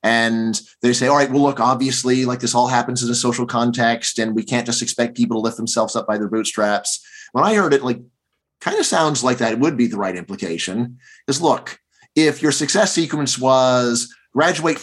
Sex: male